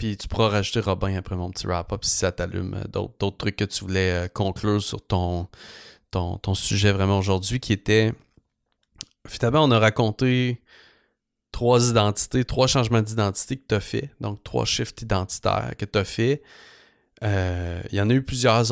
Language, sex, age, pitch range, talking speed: English, male, 30-49, 95-115 Hz, 180 wpm